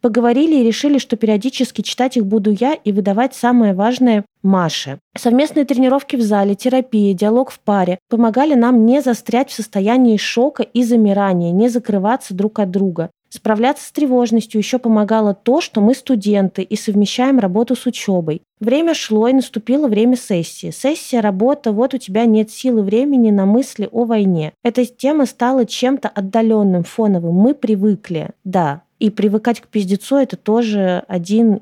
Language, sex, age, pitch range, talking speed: Russian, female, 20-39, 205-255 Hz, 160 wpm